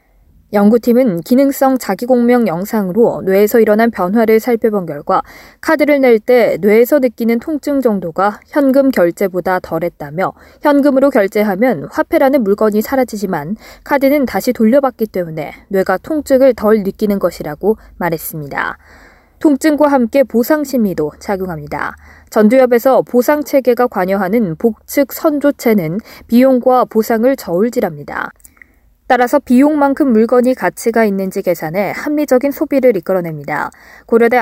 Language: Korean